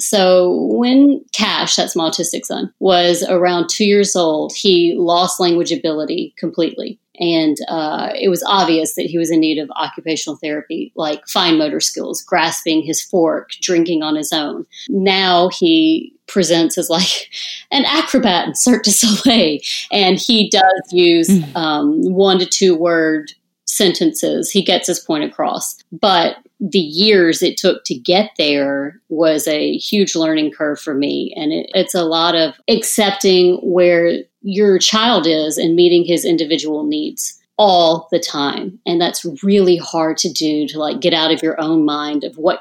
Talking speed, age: 165 wpm, 40-59